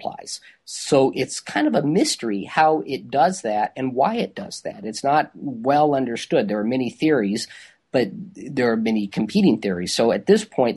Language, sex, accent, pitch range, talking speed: English, male, American, 105-125 Hz, 185 wpm